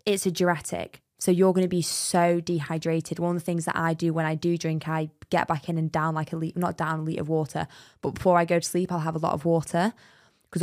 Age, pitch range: 20-39, 160-180 Hz